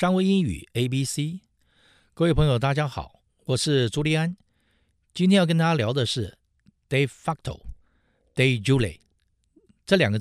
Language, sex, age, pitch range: Chinese, male, 50-69, 110-160 Hz